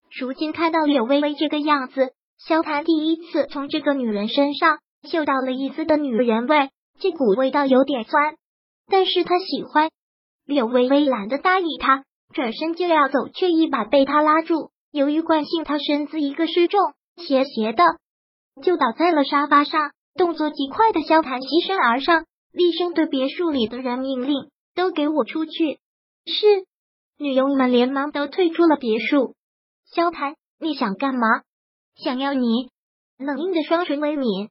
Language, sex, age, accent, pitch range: Chinese, male, 20-39, native, 265-320 Hz